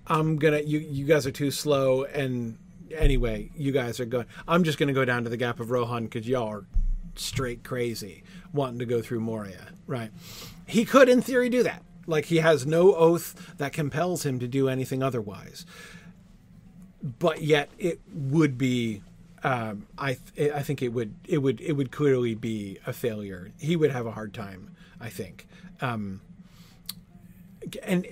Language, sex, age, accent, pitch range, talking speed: English, male, 40-59, American, 135-185 Hz, 175 wpm